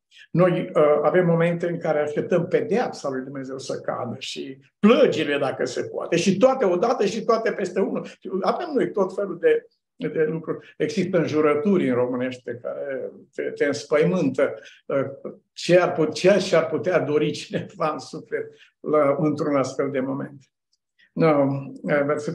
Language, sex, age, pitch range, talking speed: Romanian, male, 60-79, 145-195 Hz, 150 wpm